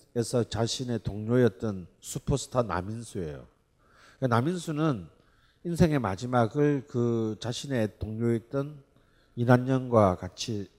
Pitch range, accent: 105-135 Hz, native